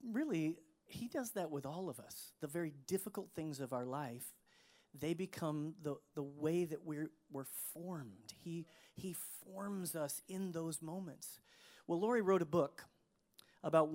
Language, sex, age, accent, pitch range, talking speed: English, male, 40-59, American, 140-175 Hz, 160 wpm